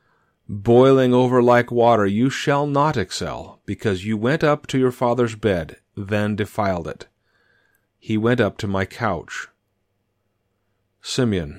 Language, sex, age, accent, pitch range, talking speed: English, male, 40-59, American, 100-125 Hz, 135 wpm